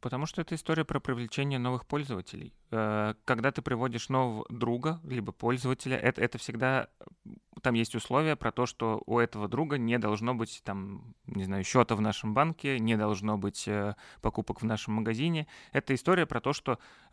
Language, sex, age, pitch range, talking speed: Russian, male, 30-49, 110-140 Hz, 170 wpm